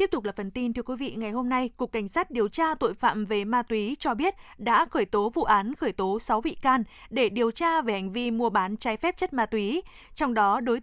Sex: female